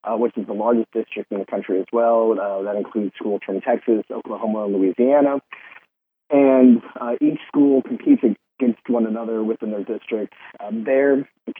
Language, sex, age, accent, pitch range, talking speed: English, male, 30-49, American, 105-120 Hz, 175 wpm